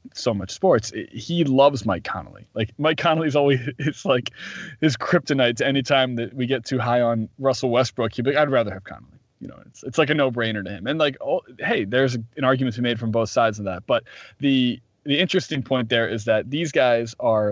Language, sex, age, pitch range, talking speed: English, male, 20-39, 110-135 Hz, 235 wpm